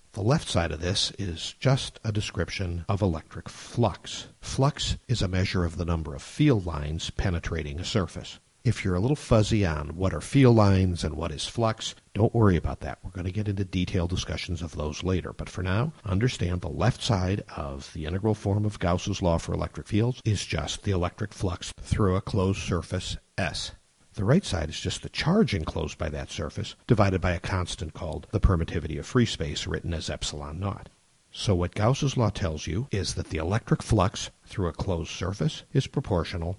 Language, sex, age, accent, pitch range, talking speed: English, male, 50-69, American, 85-110 Hz, 200 wpm